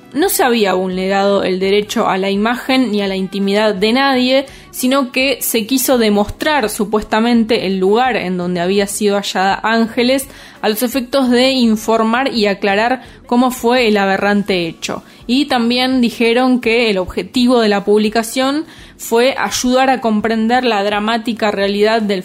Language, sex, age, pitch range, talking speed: Spanish, female, 20-39, 200-250 Hz, 155 wpm